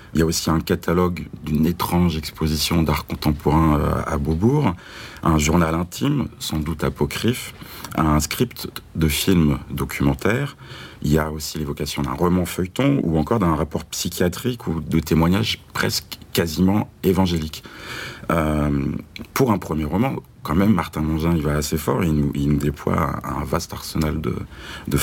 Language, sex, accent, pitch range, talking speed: French, male, French, 75-100 Hz, 160 wpm